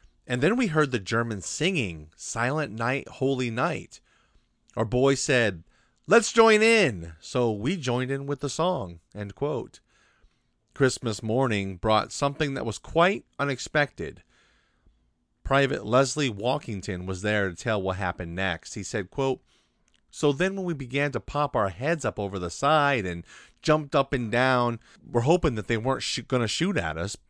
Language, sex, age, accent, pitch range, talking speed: English, male, 30-49, American, 95-135 Hz, 165 wpm